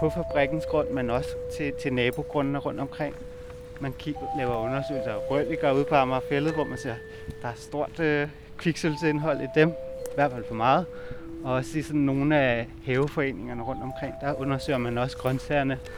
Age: 20-39